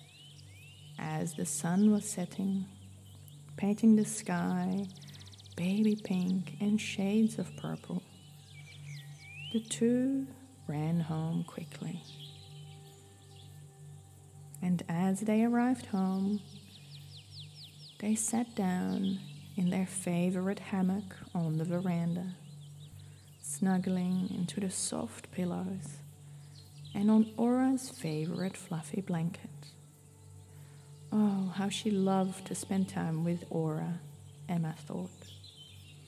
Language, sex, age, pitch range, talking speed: English, female, 20-39, 145-190 Hz, 95 wpm